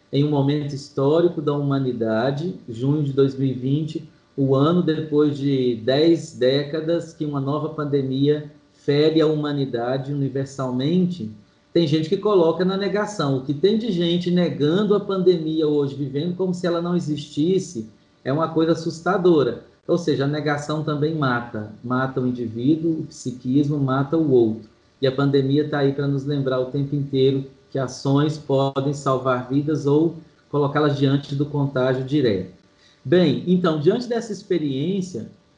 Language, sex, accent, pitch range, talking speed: Portuguese, male, Brazilian, 135-165 Hz, 150 wpm